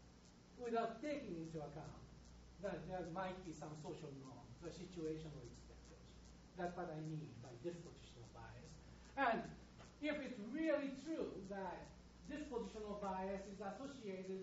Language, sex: English, male